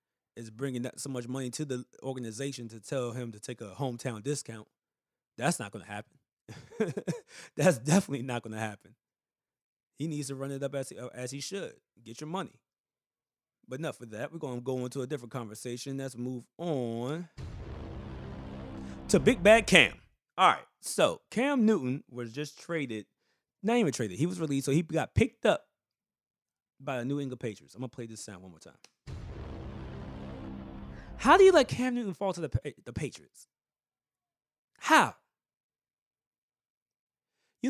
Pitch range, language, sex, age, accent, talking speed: 120-180 Hz, English, male, 20-39, American, 165 wpm